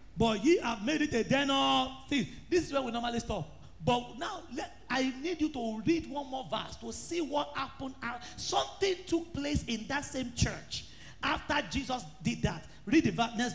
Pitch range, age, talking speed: 175-290 Hz, 40-59, 190 wpm